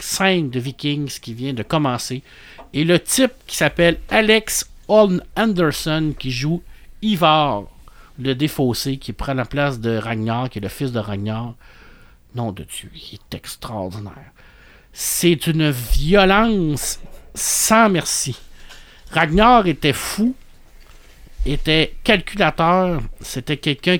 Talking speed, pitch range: 125 wpm, 125-175 Hz